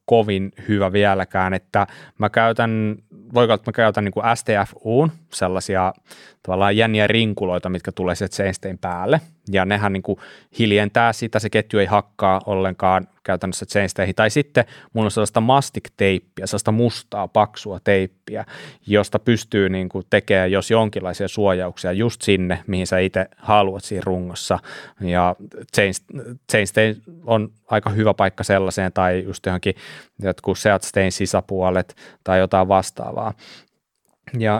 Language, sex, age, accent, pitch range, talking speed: Finnish, male, 20-39, native, 95-115 Hz, 135 wpm